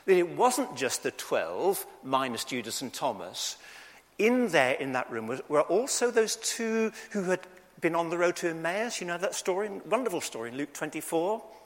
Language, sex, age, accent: English, male, 50-69, British